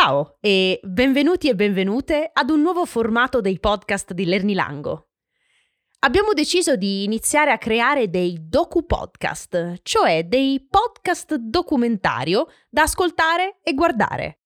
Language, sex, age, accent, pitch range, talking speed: Italian, female, 20-39, native, 185-300 Hz, 120 wpm